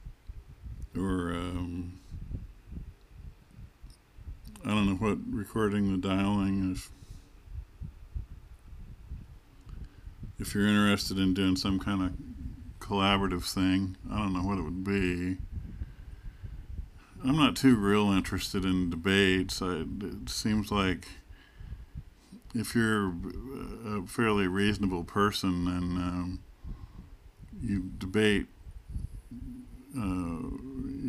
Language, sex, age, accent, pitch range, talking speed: English, male, 50-69, American, 90-100 Hz, 95 wpm